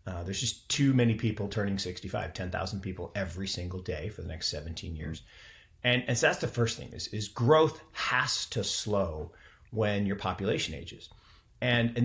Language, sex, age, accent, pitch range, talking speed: English, male, 40-59, American, 90-115 Hz, 185 wpm